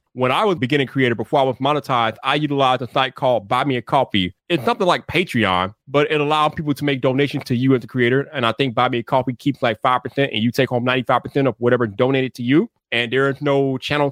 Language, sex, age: English, male, 30-49